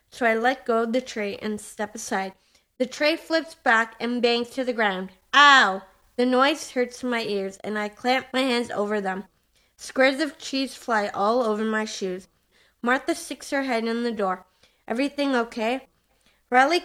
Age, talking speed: 20-39, 180 wpm